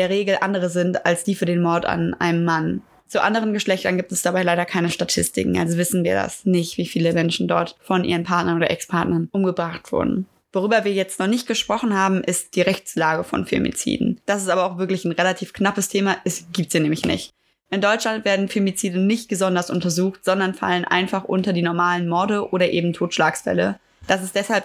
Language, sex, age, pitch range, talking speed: German, female, 20-39, 175-195 Hz, 200 wpm